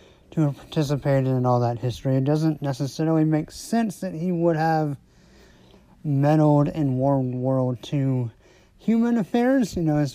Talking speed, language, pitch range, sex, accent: 155 wpm, English, 120-155 Hz, male, American